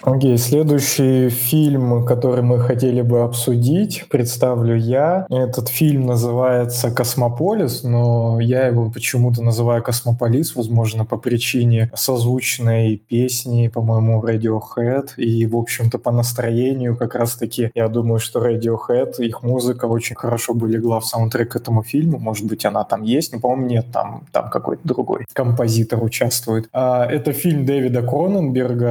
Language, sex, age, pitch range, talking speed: Russian, male, 20-39, 115-125 Hz, 145 wpm